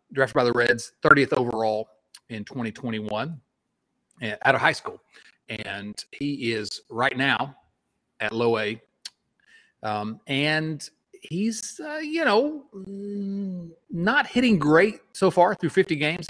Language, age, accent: English, 40-59, American